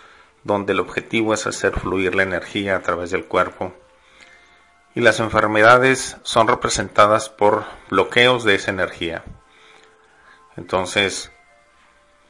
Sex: male